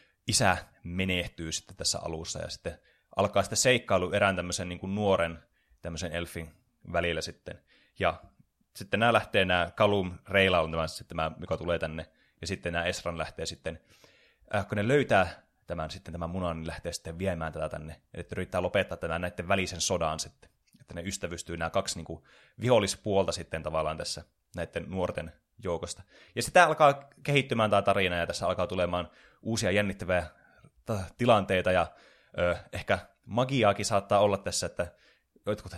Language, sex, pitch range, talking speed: Finnish, male, 90-125 Hz, 165 wpm